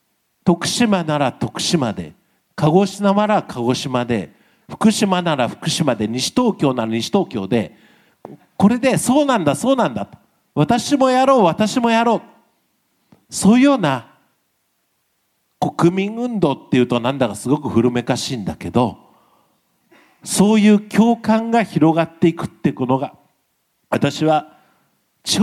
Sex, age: male, 50-69